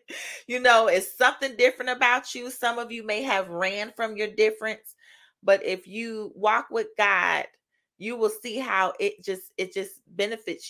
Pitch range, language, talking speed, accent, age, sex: 190-245 Hz, English, 175 wpm, American, 30-49, female